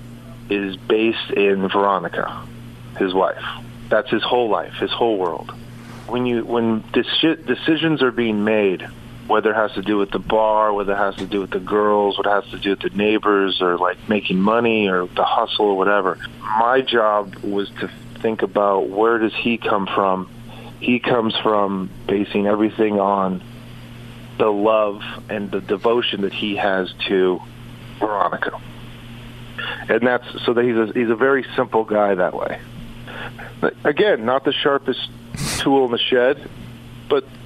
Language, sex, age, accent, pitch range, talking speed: English, male, 40-59, American, 105-120 Hz, 165 wpm